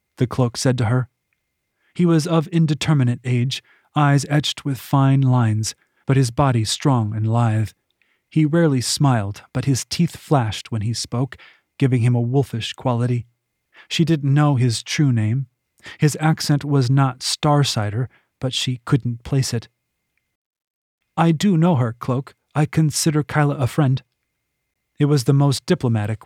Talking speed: 155 wpm